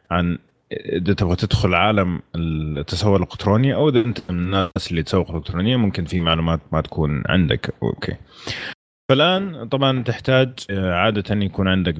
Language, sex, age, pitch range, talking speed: Arabic, male, 30-49, 85-100 Hz, 145 wpm